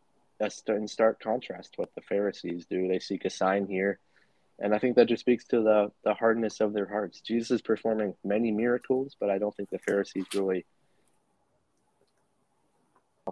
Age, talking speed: 20-39, 180 wpm